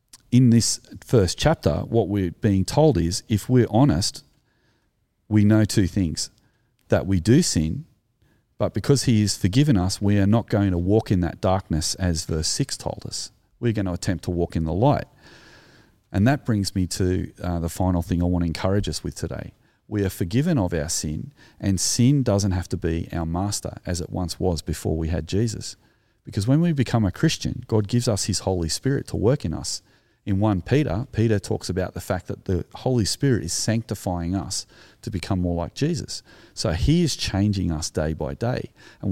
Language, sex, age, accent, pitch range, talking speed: English, male, 40-59, Australian, 90-115 Hz, 200 wpm